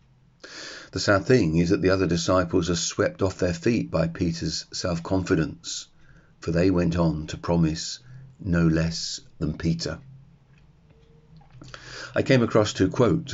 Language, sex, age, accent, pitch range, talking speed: English, male, 40-59, British, 85-110 Hz, 140 wpm